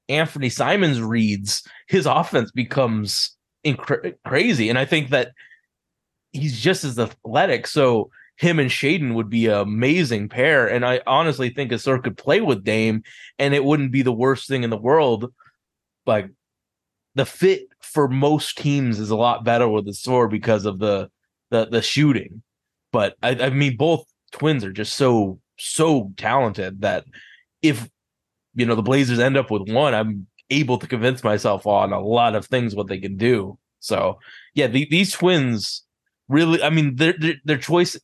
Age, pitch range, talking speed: 20-39, 110-140 Hz, 170 wpm